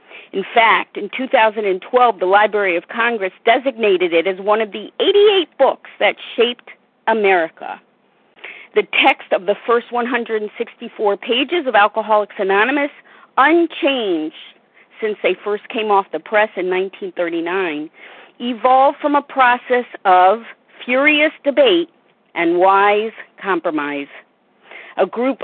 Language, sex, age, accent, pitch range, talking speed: English, female, 50-69, American, 200-260 Hz, 120 wpm